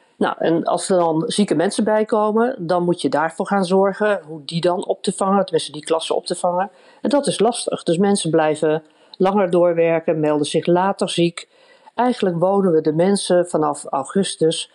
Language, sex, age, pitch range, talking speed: Dutch, female, 50-69, 160-215 Hz, 185 wpm